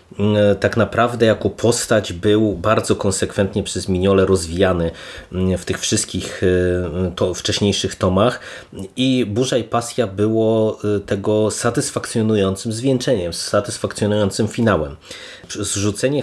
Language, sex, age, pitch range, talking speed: Polish, male, 30-49, 100-115 Hz, 100 wpm